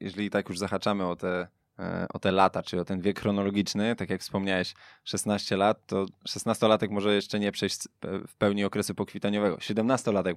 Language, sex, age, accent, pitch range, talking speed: Polish, male, 20-39, native, 100-110 Hz, 170 wpm